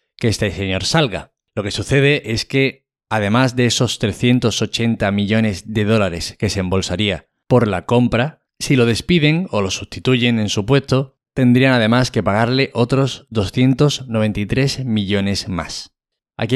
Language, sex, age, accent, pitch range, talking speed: Spanish, male, 20-39, Spanish, 100-125 Hz, 145 wpm